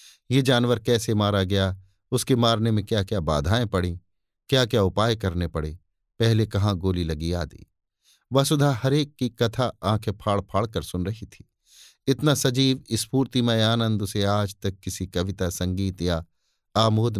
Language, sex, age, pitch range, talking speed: Hindi, male, 50-69, 95-130 Hz, 155 wpm